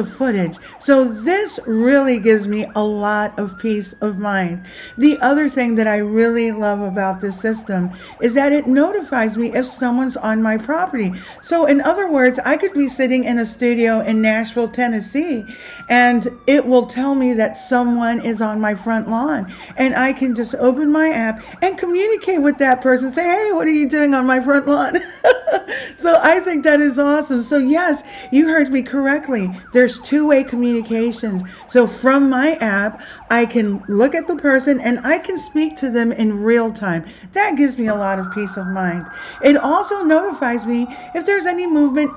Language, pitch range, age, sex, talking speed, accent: English, 225-290 Hz, 40-59, female, 185 wpm, American